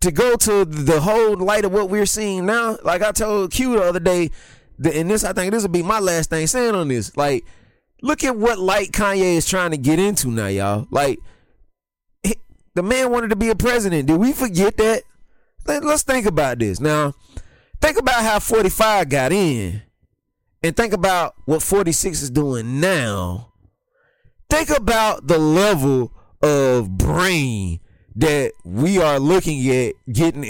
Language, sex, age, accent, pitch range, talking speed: English, male, 20-39, American, 130-200 Hz, 170 wpm